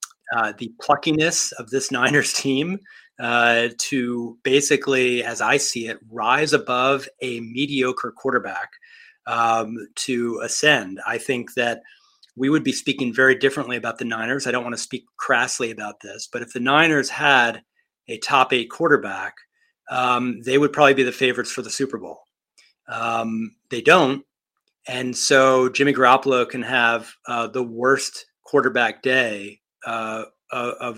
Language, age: English, 30-49